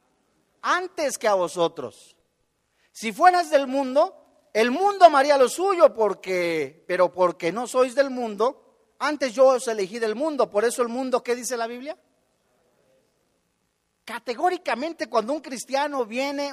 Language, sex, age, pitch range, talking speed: Spanish, male, 40-59, 210-255 Hz, 140 wpm